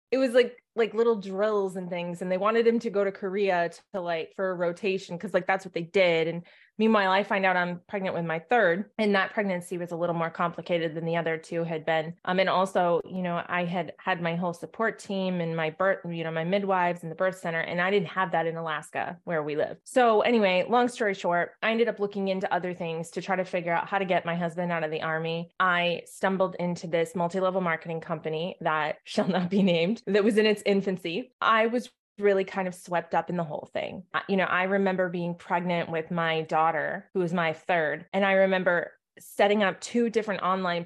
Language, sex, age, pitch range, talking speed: English, female, 20-39, 170-195 Hz, 235 wpm